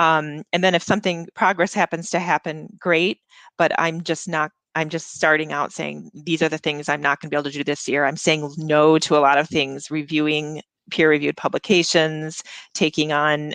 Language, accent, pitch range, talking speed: English, American, 150-175 Hz, 205 wpm